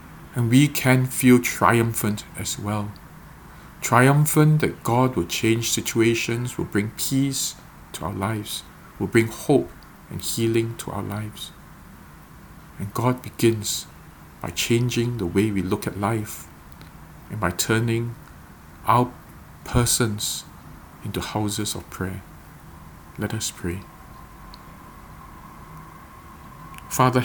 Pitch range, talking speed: 100-120 Hz, 110 wpm